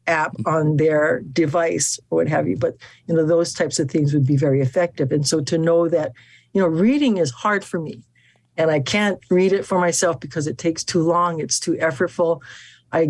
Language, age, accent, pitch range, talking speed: English, 60-79, American, 140-175 Hz, 215 wpm